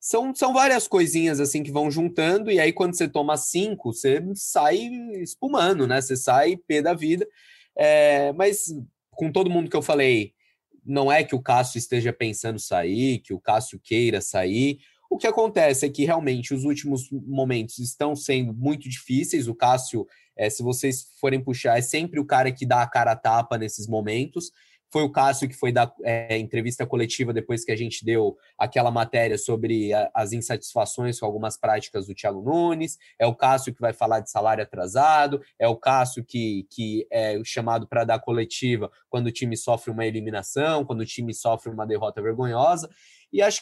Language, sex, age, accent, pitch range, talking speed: Portuguese, male, 20-39, Brazilian, 115-165 Hz, 185 wpm